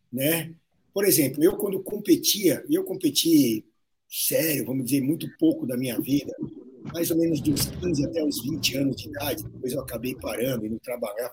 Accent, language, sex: Brazilian, Portuguese, male